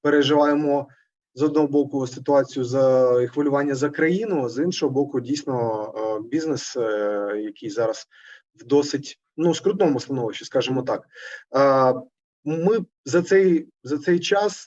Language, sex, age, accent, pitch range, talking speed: Ukrainian, male, 30-49, native, 130-160 Hz, 125 wpm